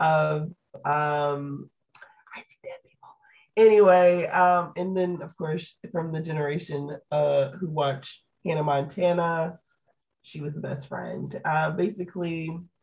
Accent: American